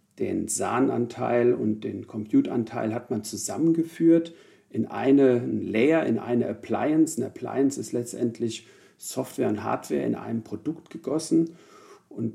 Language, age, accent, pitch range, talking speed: German, 50-69, German, 115-145 Hz, 125 wpm